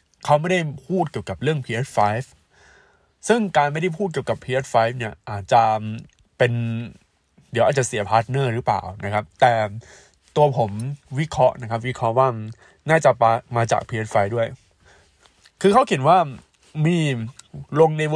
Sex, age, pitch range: male, 20-39, 115-160 Hz